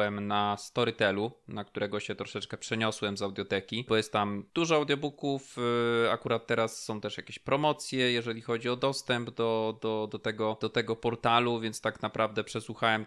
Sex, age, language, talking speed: male, 20-39, Polish, 145 wpm